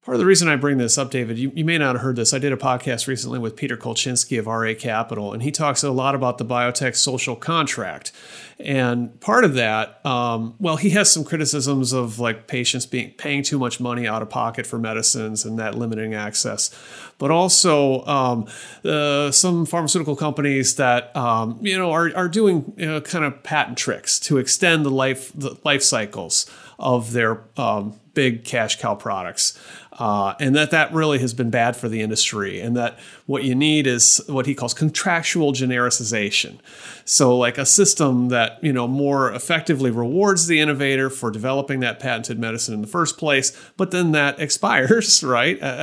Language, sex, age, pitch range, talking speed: English, male, 30-49, 120-150 Hz, 190 wpm